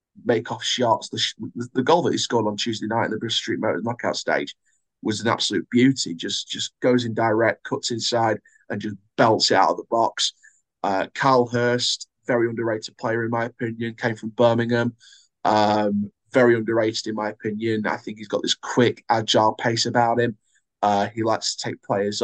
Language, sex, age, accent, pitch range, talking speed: English, male, 20-39, British, 110-120 Hz, 195 wpm